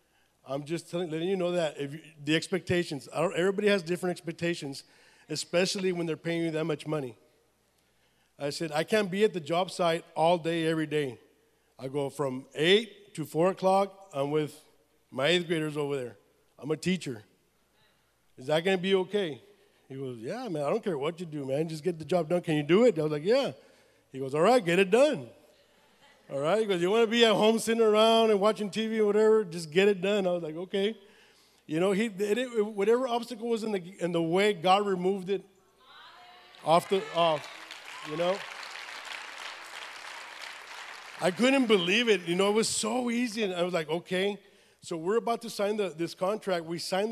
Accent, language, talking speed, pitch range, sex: American, English, 200 wpm, 160-205 Hz, male